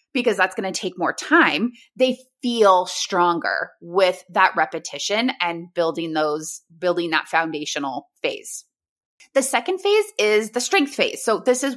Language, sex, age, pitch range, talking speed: English, female, 20-39, 180-250 Hz, 155 wpm